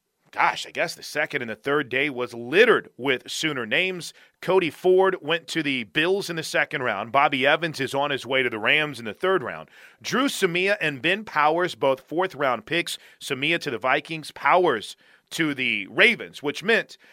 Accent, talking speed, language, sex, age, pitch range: American, 195 wpm, English, male, 40-59, 130-175 Hz